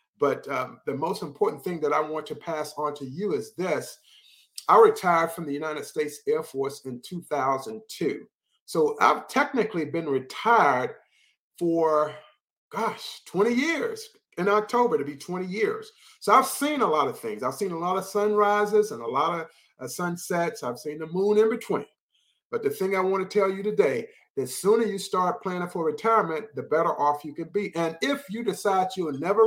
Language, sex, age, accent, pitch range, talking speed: English, male, 50-69, American, 155-225 Hz, 195 wpm